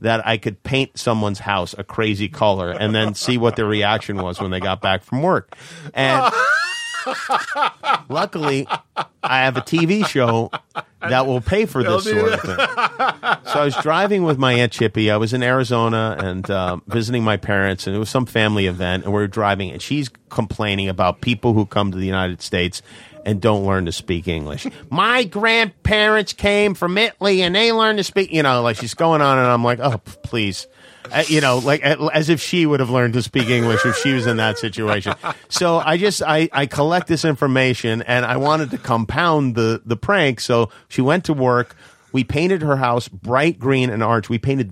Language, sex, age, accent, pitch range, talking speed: English, male, 40-59, American, 105-155 Hz, 205 wpm